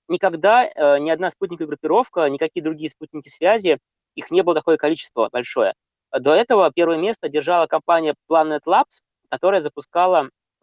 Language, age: Russian, 20-39